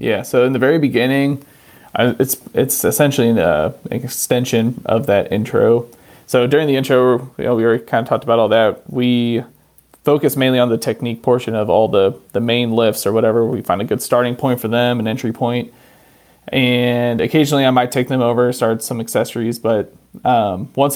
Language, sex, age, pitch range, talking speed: English, male, 30-49, 115-130 Hz, 195 wpm